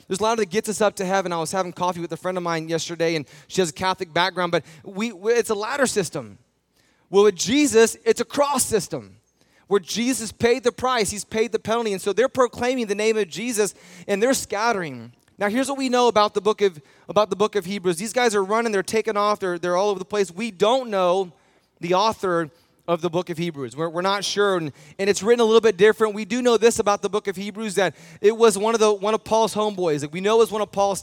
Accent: American